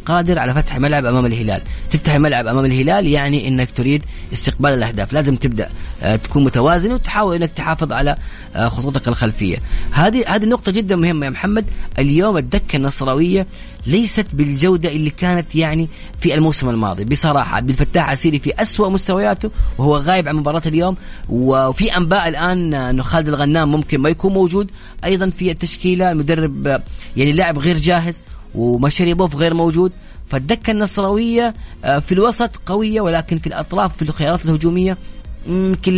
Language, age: English, 30-49